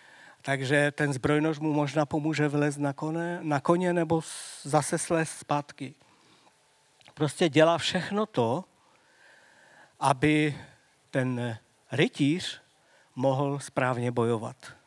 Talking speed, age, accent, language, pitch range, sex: 95 wpm, 50-69, native, Czech, 140-170 Hz, male